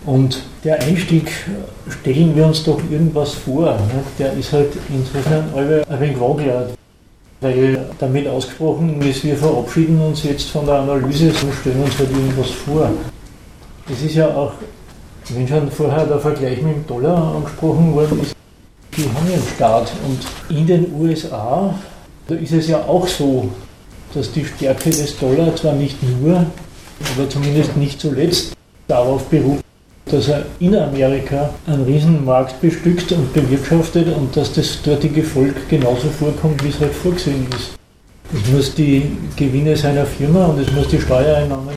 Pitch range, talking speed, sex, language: 130-155 Hz, 155 wpm, male, German